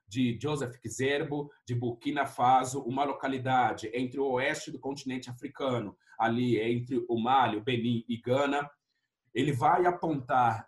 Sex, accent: male, Brazilian